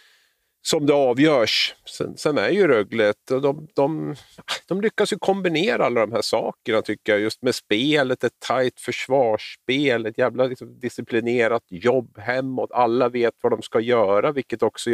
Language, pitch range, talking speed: Swedish, 115-155 Hz, 160 wpm